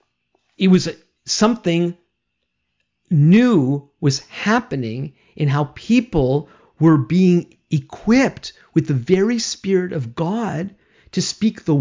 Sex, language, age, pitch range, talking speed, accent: male, English, 50-69, 135-195 Hz, 105 wpm, American